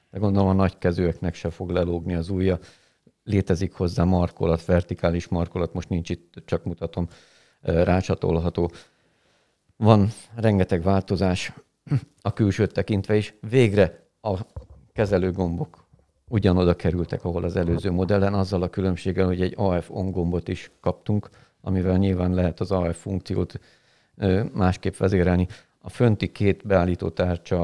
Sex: male